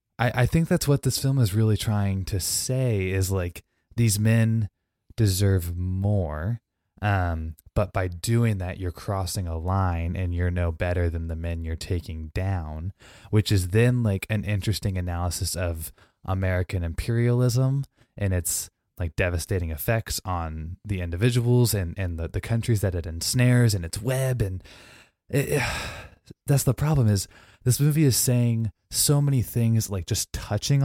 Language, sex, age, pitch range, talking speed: English, male, 20-39, 90-120 Hz, 155 wpm